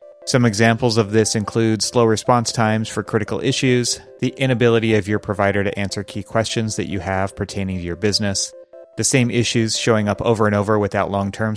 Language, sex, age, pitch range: English, male, 30-49, 100-125 Hz